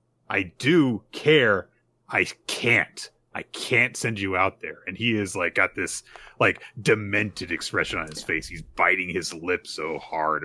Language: English